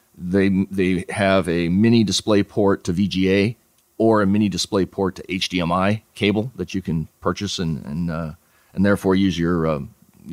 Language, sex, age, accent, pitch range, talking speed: English, male, 40-59, American, 85-105 Hz, 170 wpm